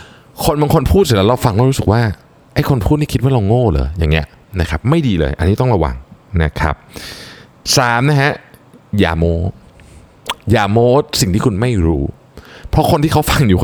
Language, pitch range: Thai, 90-140 Hz